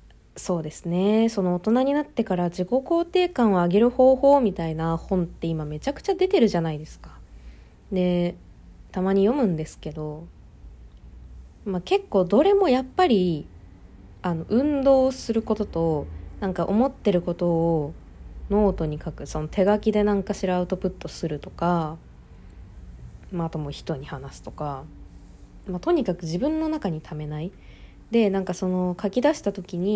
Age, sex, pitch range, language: 20-39, female, 160-205 Hz, Japanese